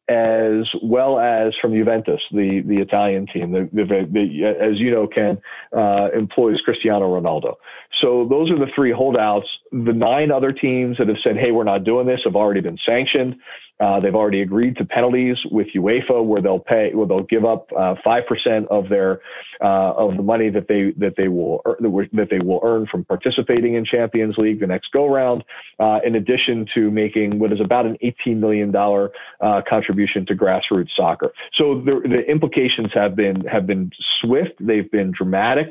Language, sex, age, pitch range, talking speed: English, male, 40-59, 100-125 Hz, 190 wpm